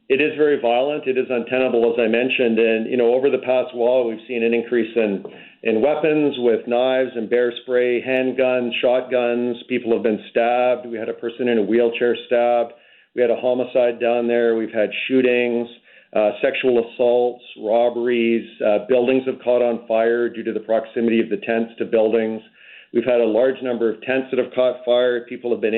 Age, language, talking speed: 50-69, English, 200 wpm